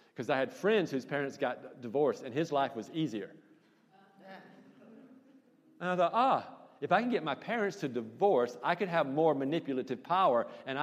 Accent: American